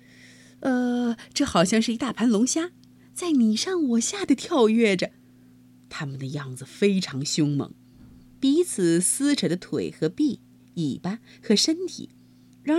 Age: 30-49